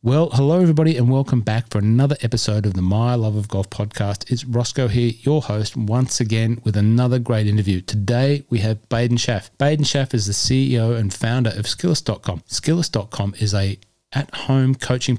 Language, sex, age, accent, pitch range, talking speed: English, male, 40-59, Australian, 105-130 Hz, 180 wpm